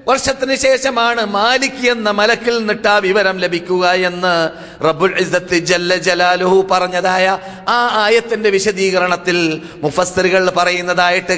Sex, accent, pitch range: male, native, 180-240 Hz